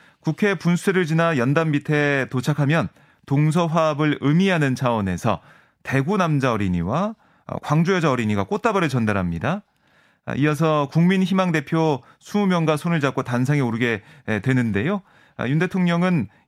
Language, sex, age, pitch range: Korean, male, 30-49, 125-170 Hz